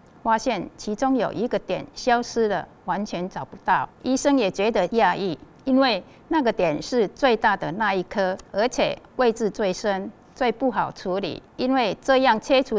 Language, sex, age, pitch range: Chinese, female, 50-69, 180-235 Hz